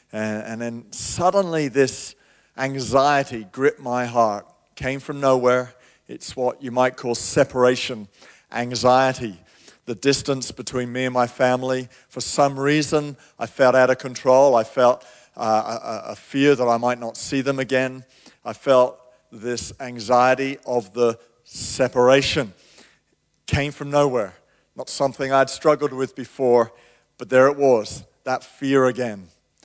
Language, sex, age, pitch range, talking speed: English, male, 50-69, 125-170 Hz, 140 wpm